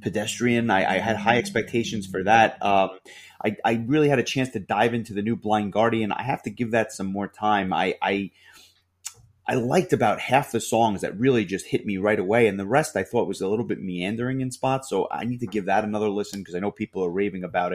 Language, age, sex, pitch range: English, 30-49, male, 100-120 Hz